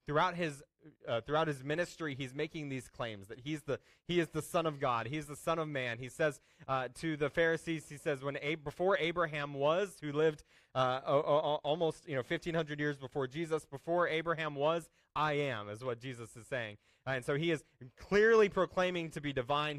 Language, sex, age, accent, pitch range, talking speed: English, male, 20-39, American, 140-170 Hz, 210 wpm